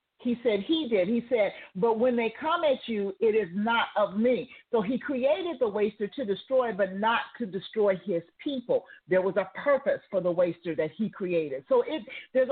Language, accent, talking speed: English, American, 200 wpm